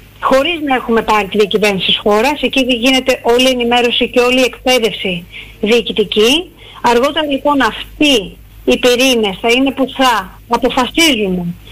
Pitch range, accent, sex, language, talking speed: 220-285 Hz, native, female, Greek, 145 wpm